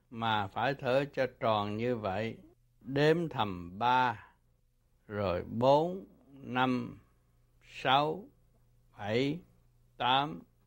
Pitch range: 110-135 Hz